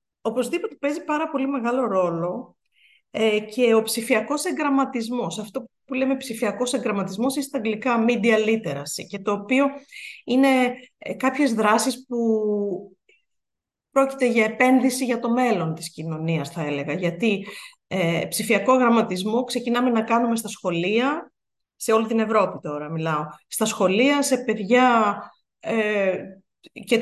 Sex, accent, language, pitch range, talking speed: female, native, Greek, 215-275 Hz, 125 wpm